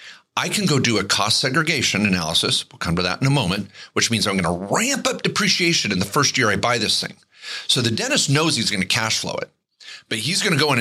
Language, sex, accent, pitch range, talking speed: English, male, American, 100-140 Hz, 260 wpm